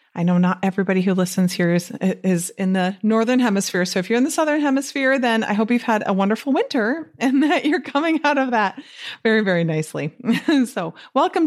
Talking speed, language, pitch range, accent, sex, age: 210 wpm, English, 170-250 Hz, American, female, 30-49